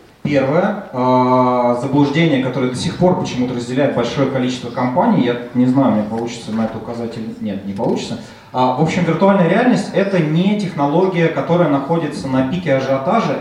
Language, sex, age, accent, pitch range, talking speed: Russian, male, 30-49, native, 125-170 Hz, 165 wpm